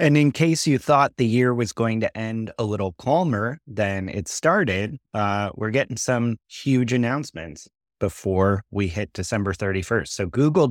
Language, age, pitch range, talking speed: English, 30-49, 100-130 Hz, 170 wpm